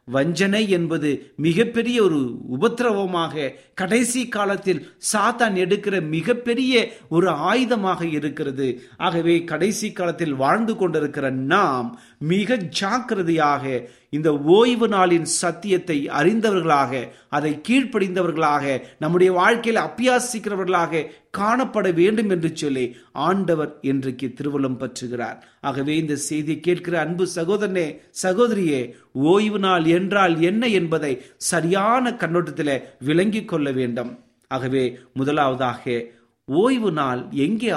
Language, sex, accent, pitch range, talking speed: Tamil, male, native, 150-215 Hz, 95 wpm